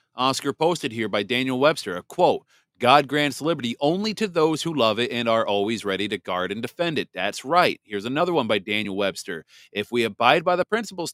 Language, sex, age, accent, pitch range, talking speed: English, male, 40-59, American, 115-150 Hz, 215 wpm